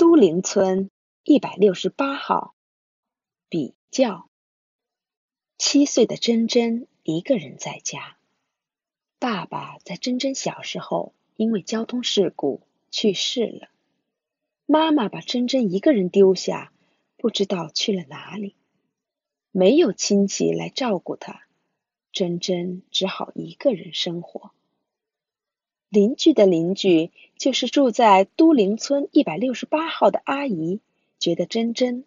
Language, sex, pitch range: Chinese, female, 190-265 Hz